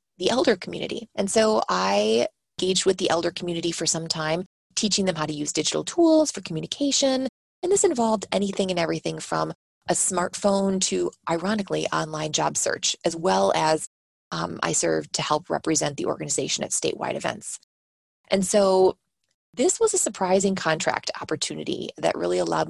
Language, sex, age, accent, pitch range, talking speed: English, female, 20-39, American, 155-195 Hz, 165 wpm